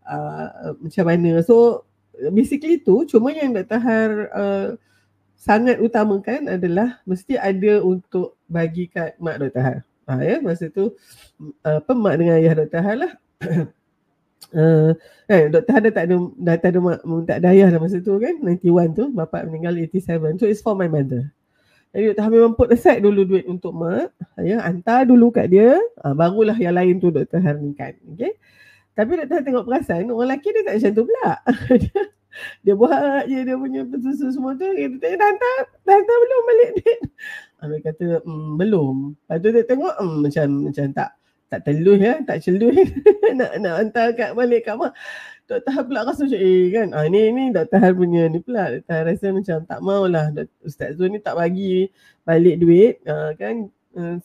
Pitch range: 165-240 Hz